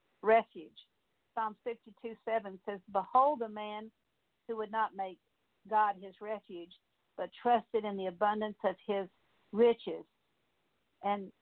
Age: 50-69